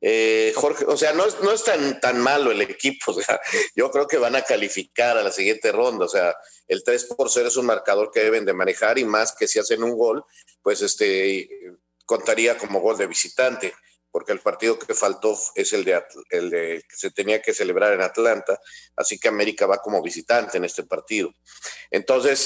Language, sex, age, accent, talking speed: Spanish, male, 50-69, Mexican, 210 wpm